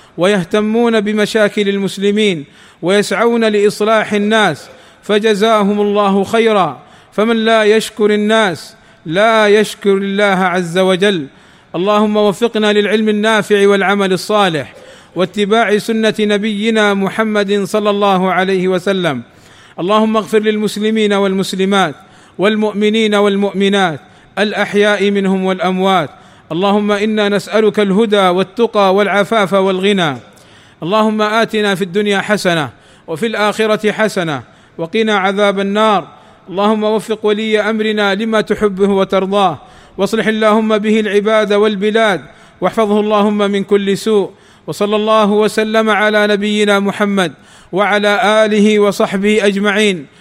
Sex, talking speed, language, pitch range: male, 105 wpm, Arabic, 195-215 Hz